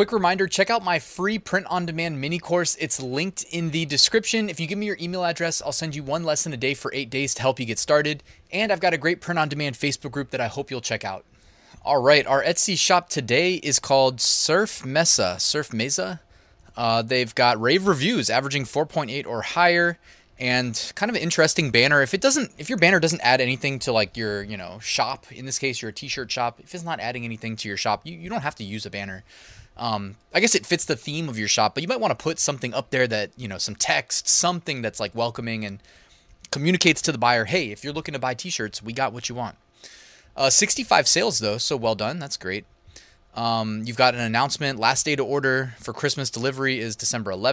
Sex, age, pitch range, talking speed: male, 20-39, 115-170 Hz, 230 wpm